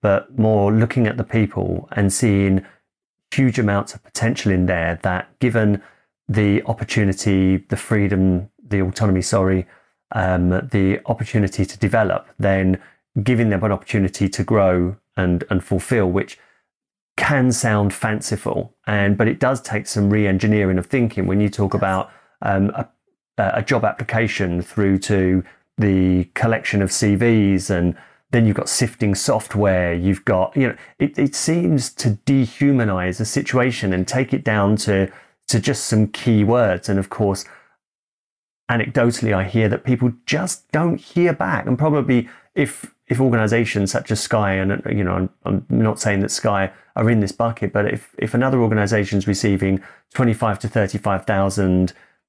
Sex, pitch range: male, 95-115 Hz